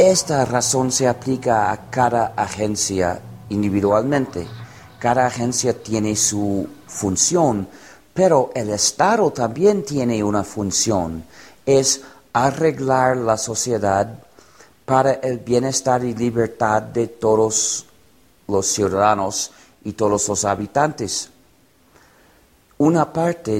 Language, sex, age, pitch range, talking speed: Spanish, male, 40-59, 105-130 Hz, 100 wpm